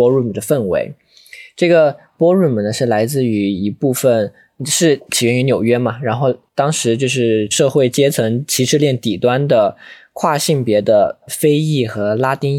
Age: 20-39